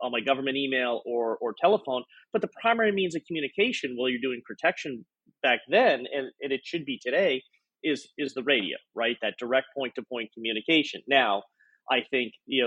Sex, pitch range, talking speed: male, 125-150 Hz, 195 wpm